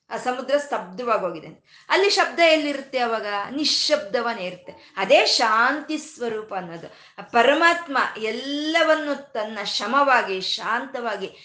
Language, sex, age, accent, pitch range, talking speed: Kannada, female, 20-39, native, 205-290 Hz, 100 wpm